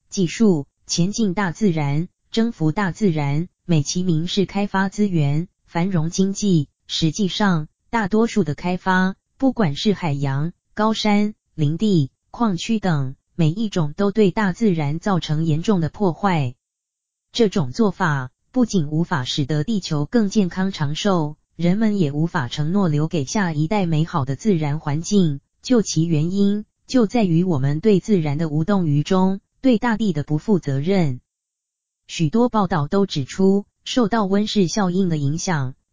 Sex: female